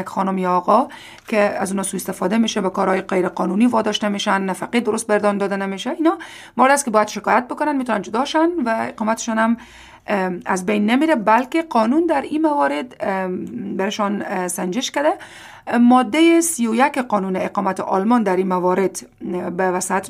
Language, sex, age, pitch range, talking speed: Persian, female, 30-49, 190-255 Hz, 155 wpm